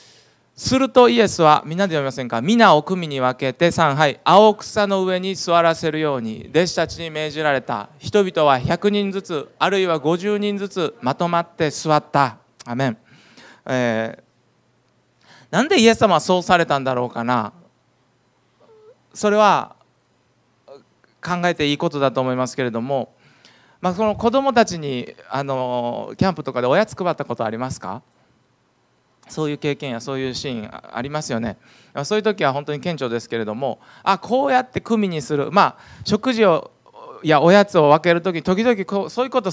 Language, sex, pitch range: Japanese, male, 135-210 Hz